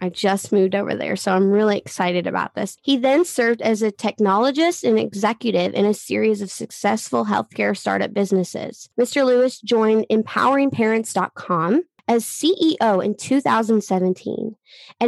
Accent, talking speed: American, 140 wpm